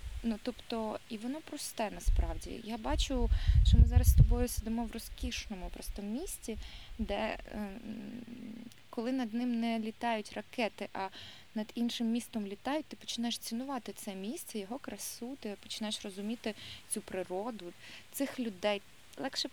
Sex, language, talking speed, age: female, Ukrainian, 140 wpm, 20-39